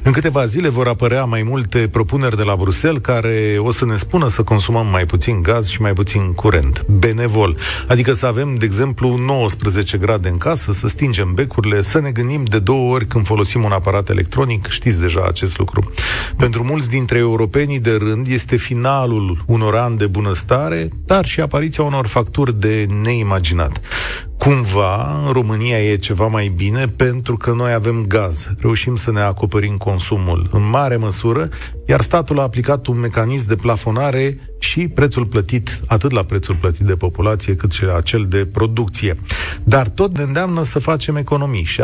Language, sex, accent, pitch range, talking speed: Romanian, male, native, 100-125 Hz, 175 wpm